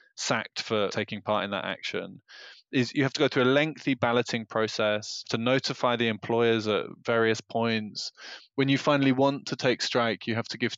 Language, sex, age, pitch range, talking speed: English, male, 20-39, 115-140 Hz, 195 wpm